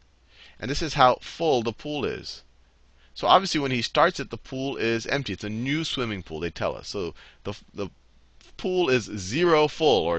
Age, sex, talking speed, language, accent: 30-49, male, 200 wpm, English, American